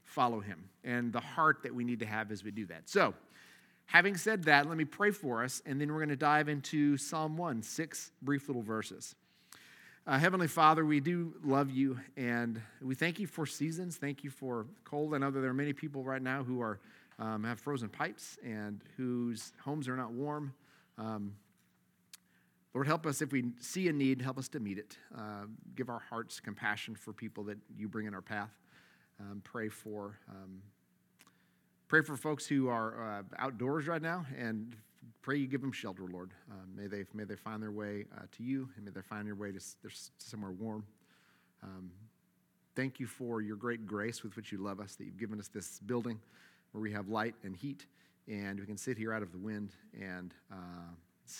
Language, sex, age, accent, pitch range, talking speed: English, male, 40-59, American, 105-140 Hz, 205 wpm